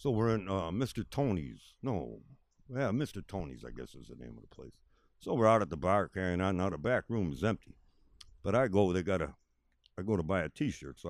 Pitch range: 75-105 Hz